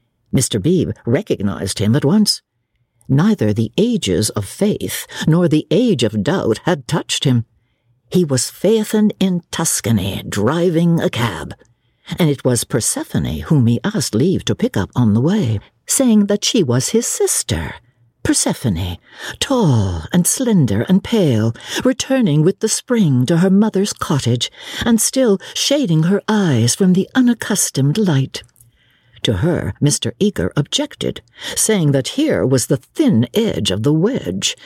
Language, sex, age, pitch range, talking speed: English, female, 60-79, 115-195 Hz, 145 wpm